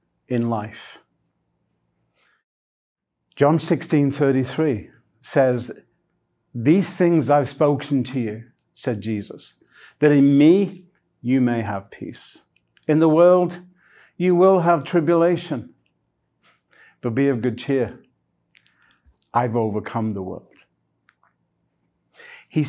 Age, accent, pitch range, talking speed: 50-69, British, 115-160 Hz, 100 wpm